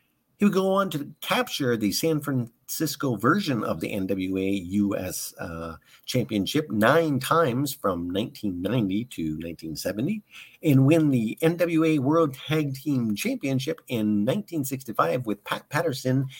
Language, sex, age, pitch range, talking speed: English, male, 50-69, 105-160 Hz, 130 wpm